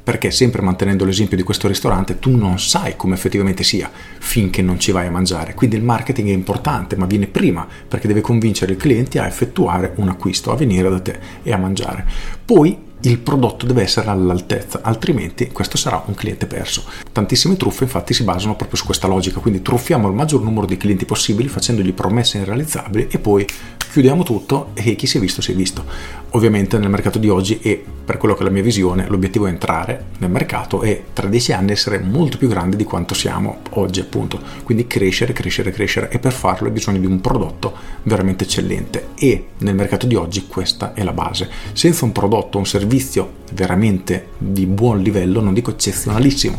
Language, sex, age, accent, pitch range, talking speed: Italian, male, 40-59, native, 95-120 Hz, 195 wpm